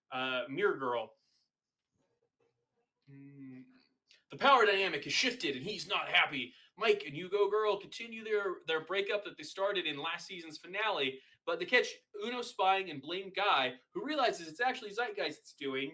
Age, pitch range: 20-39, 155-250 Hz